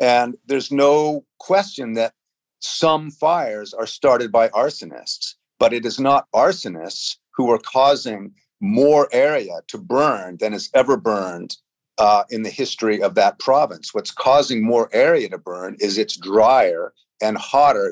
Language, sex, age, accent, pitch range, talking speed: English, male, 50-69, American, 110-155 Hz, 150 wpm